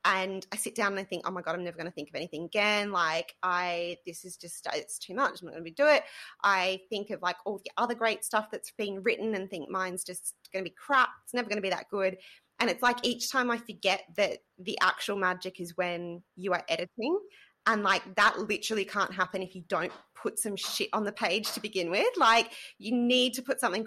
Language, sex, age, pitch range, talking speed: English, female, 20-39, 185-235 Hz, 245 wpm